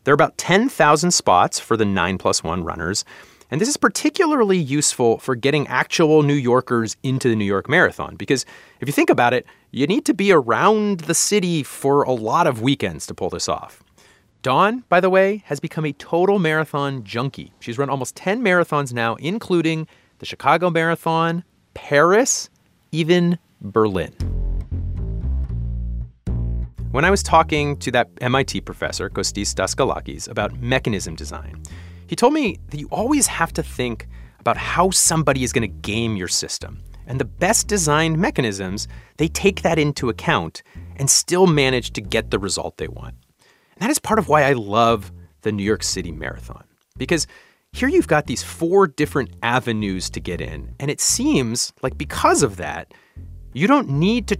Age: 30-49